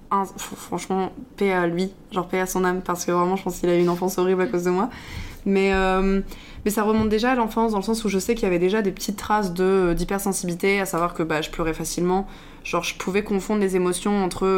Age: 20-39